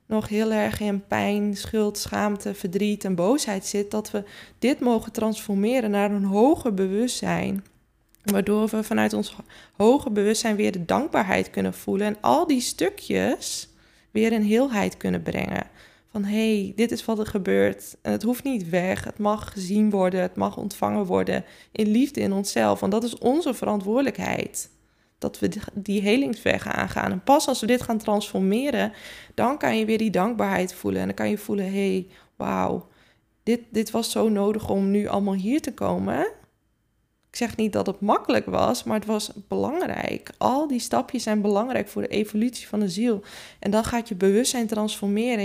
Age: 20-39